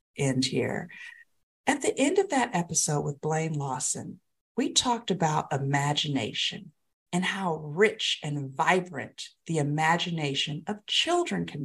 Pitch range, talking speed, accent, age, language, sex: 150-205 Hz, 130 wpm, American, 50-69, English, female